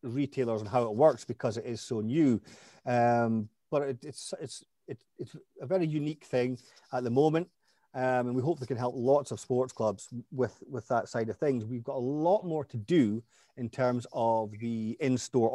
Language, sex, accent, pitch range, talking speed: English, male, British, 115-145 Hz, 195 wpm